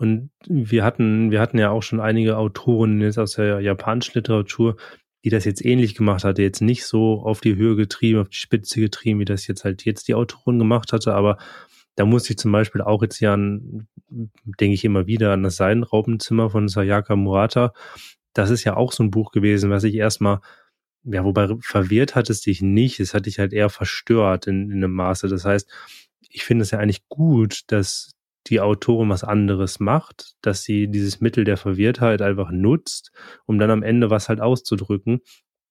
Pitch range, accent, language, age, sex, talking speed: 100-115 Hz, German, German, 20-39, male, 195 wpm